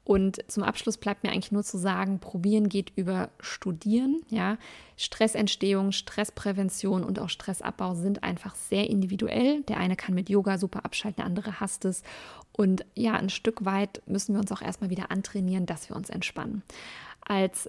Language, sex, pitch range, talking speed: German, female, 195-225 Hz, 175 wpm